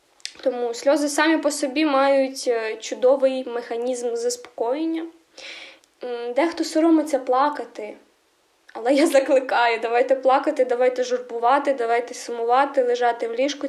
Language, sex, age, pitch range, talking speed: Ukrainian, female, 10-29, 245-315 Hz, 105 wpm